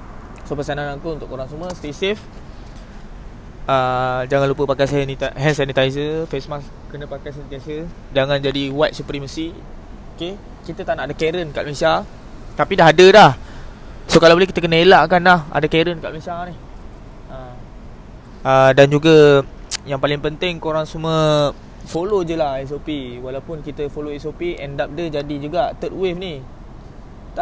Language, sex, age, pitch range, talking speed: Malay, male, 20-39, 135-170 Hz, 160 wpm